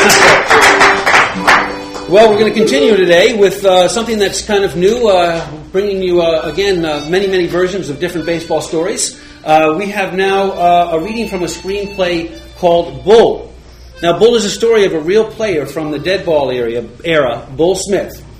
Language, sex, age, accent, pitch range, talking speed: English, male, 40-59, American, 135-185 Hz, 175 wpm